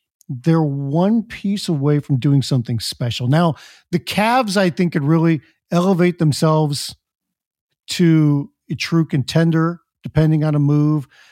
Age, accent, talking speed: 50-69, American, 135 wpm